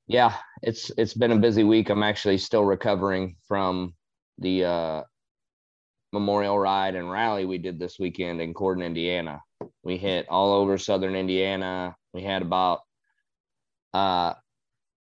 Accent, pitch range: American, 90-110 Hz